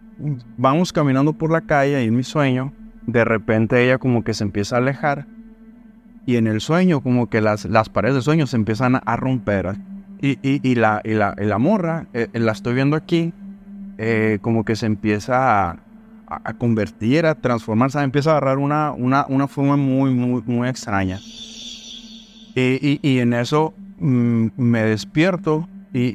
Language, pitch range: Spanish, 115-160 Hz